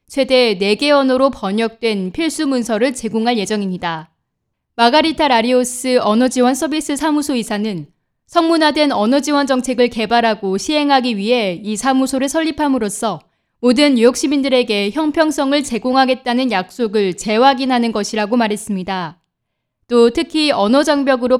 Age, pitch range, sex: 20-39, 210-275 Hz, female